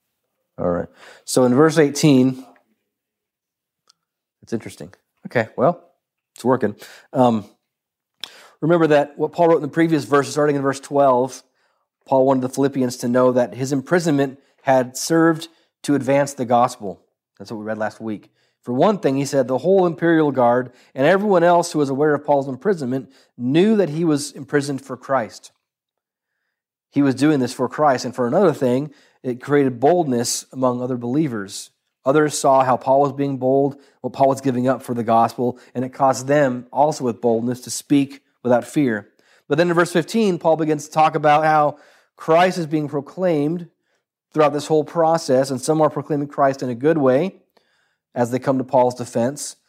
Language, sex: English, male